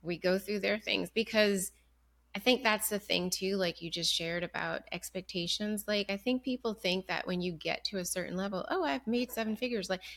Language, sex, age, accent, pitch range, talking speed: English, female, 30-49, American, 175-215 Hz, 220 wpm